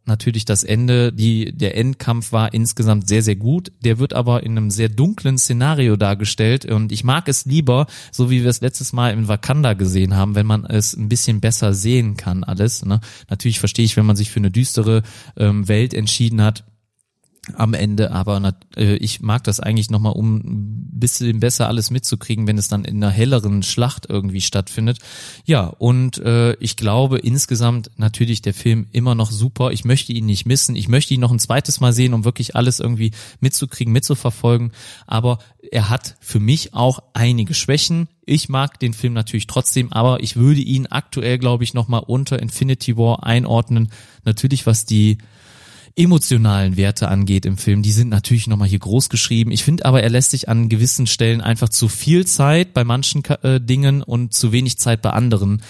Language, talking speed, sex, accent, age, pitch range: German, 185 wpm, male, German, 30-49, 105-125 Hz